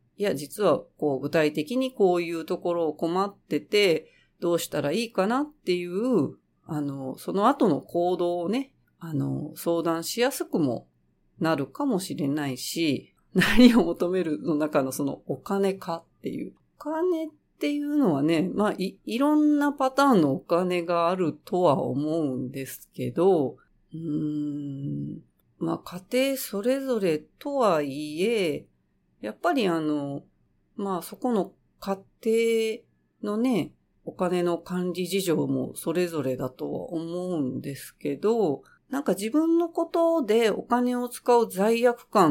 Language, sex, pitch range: Japanese, female, 155-255 Hz